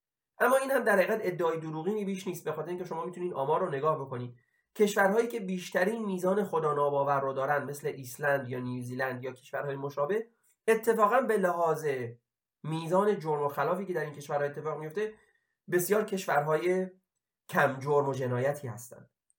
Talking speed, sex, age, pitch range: 165 wpm, male, 30-49, 140-190 Hz